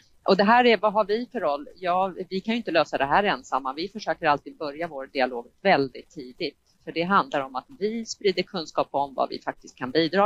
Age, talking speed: 30-49, 235 wpm